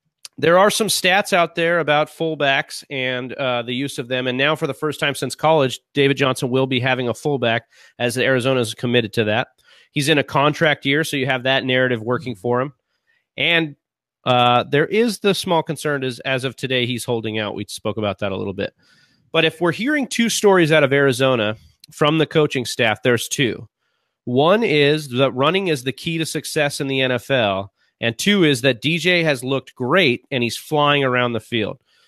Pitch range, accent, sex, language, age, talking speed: 125-155 Hz, American, male, English, 30-49, 205 wpm